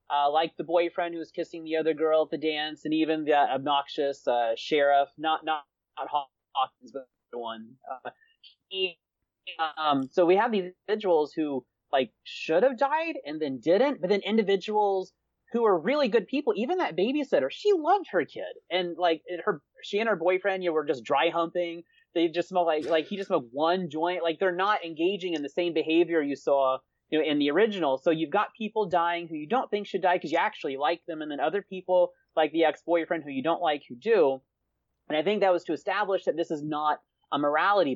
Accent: American